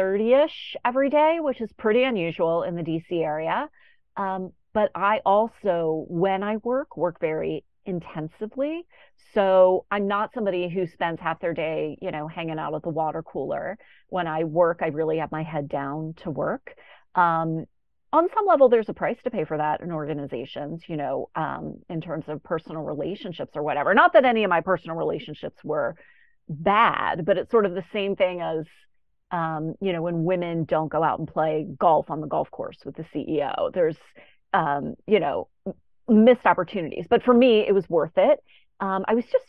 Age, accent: 30-49, American